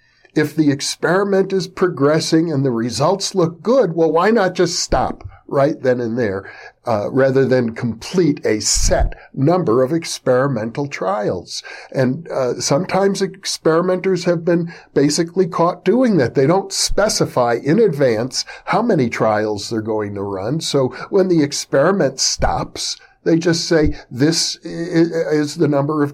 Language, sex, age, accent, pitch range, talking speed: English, male, 50-69, American, 125-165 Hz, 145 wpm